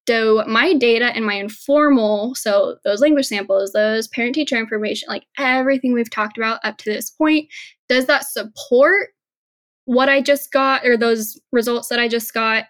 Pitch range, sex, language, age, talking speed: 215-270 Hz, female, English, 10-29, 170 wpm